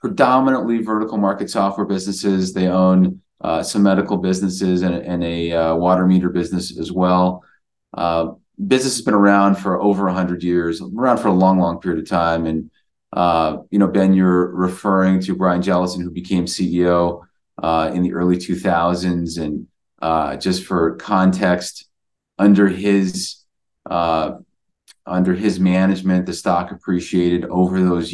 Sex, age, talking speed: male, 30-49, 155 wpm